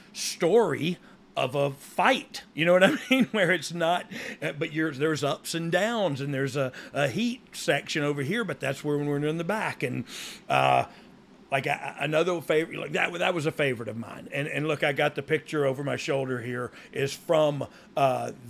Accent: American